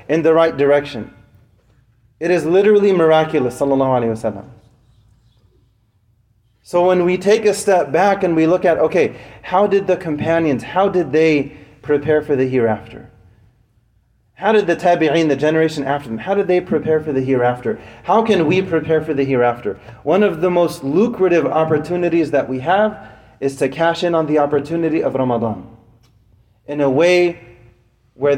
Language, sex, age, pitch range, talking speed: English, male, 30-49, 120-165 Hz, 160 wpm